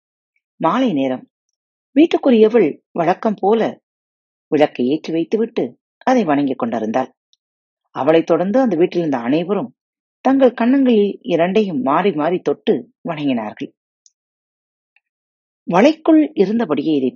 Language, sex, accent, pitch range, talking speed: Tamil, female, native, 145-240 Hz, 95 wpm